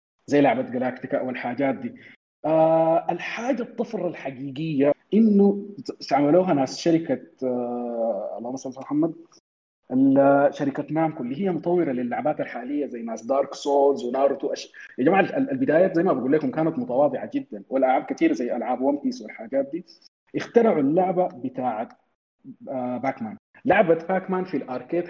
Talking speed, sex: 135 wpm, male